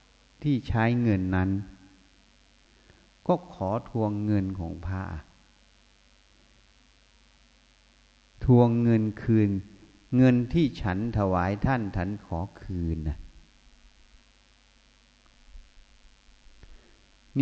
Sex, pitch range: male, 85-120 Hz